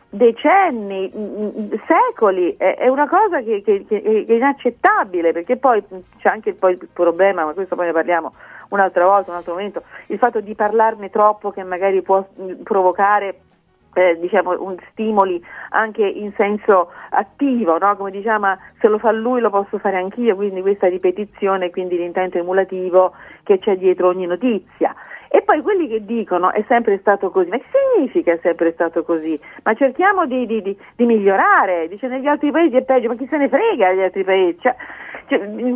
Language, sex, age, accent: Italian, female, 40-59, native